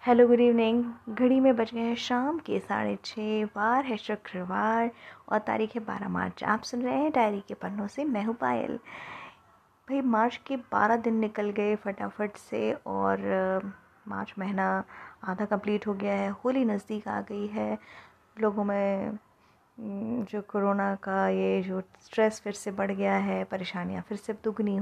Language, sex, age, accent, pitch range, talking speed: Hindi, female, 20-39, native, 190-230 Hz, 165 wpm